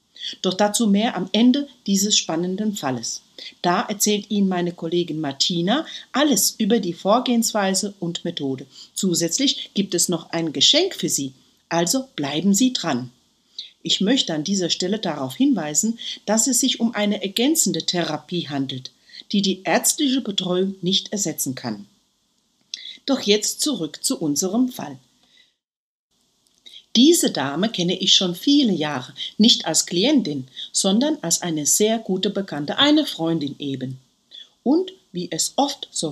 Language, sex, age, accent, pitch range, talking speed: German, female, 50-69, German, 165-240 Hz, 140 wpm